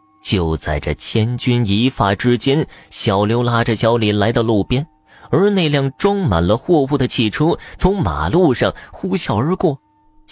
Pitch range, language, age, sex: 95-130 Hz, Chinese, 30-49, male